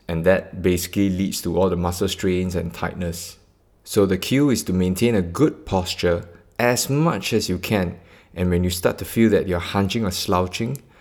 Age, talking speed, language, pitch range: 20-39, 195 wpm, English, 90-105 Hz